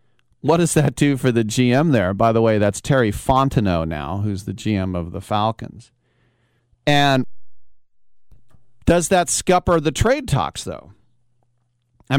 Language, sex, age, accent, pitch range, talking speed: English, male, 40-59, American, 110-135 Hz, 150 wpm